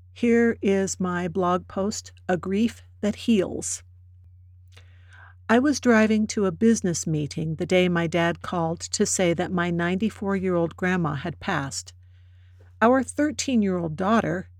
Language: English